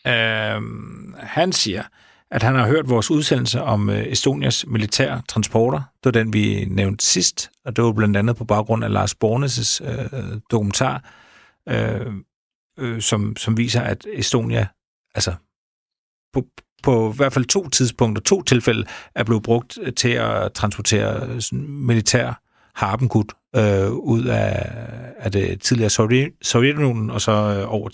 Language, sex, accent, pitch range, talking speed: Danish, male, native, 110-130 Hz, 140 wpm